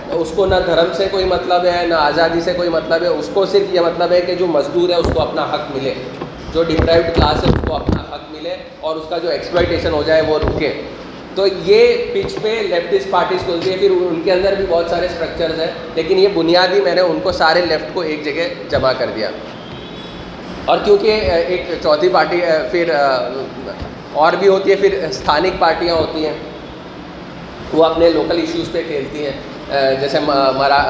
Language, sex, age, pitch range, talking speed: Urdu, male, 20-39, 145-180 Hz, 200 wpm